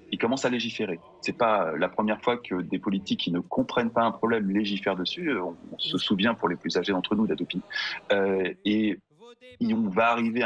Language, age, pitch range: French, 30-49, 100-130 Hz